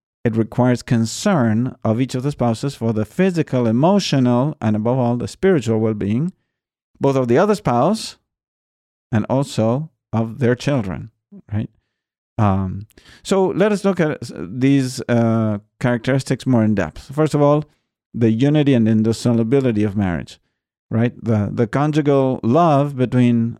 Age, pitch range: 50-69, 110-140 Hz